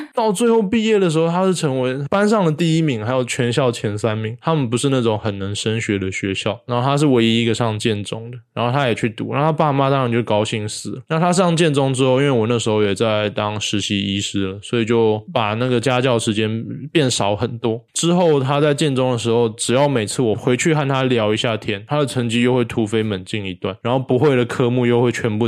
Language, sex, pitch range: Chinese, male, 110-140 Hz